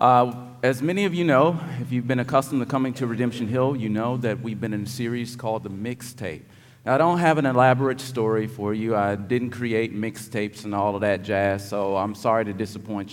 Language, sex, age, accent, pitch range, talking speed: English, male, 40-59, American, 105-130 Hz, 225 wpm